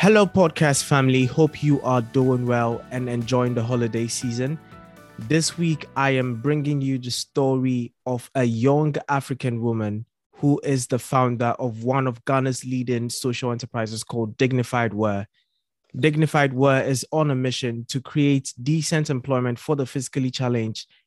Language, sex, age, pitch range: English, male, 20-39, 120-140 Hz